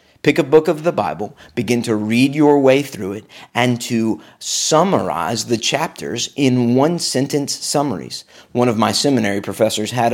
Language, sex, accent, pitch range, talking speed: English, male, American, 110-145 Hz, 160 wpm